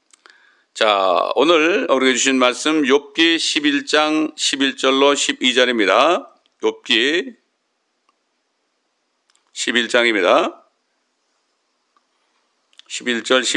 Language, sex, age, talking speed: English, male, 60-79, 55 wpm